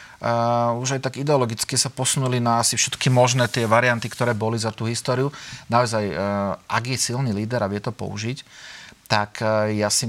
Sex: male